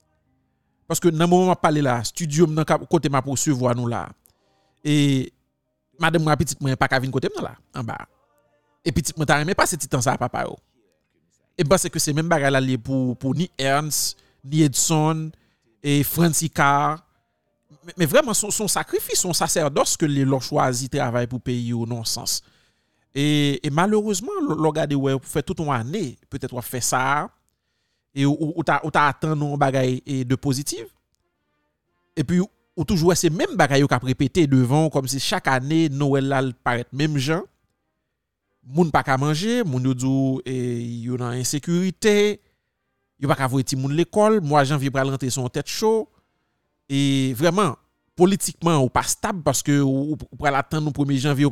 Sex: male